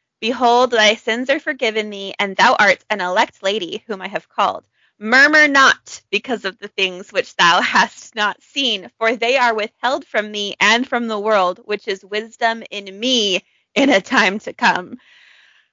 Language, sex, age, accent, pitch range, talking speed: English, female, 20-39, American, 195-250 Hz, 180 wpm